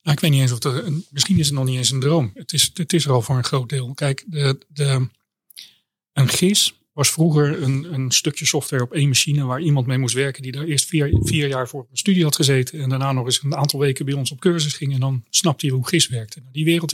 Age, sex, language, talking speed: 30-49, male, Dutch, 260 wpm